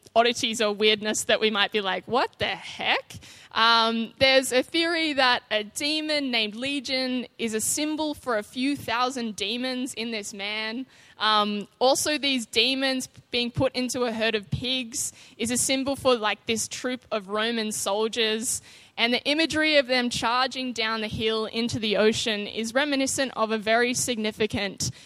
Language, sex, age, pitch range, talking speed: English, female, 10-29, 210-255 Hz, 170 wpm